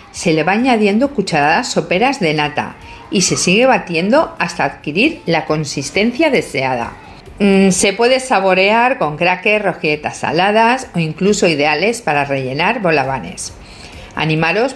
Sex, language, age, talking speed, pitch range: female, Spanish, 50-69, 130 wpm, 155-235 Hz